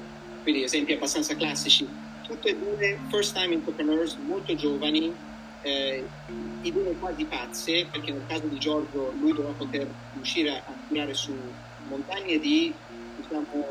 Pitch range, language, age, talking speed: 125-160 Hz, Italian, 30-49, 145 wpm